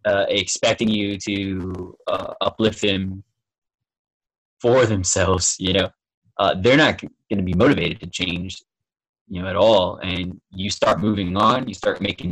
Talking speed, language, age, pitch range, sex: 155 wpm, English, 20-39, 90-110 Hz, male